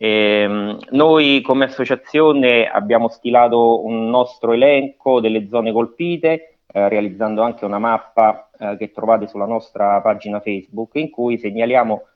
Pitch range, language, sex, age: 110-135 Hz, Italian, male, 30-49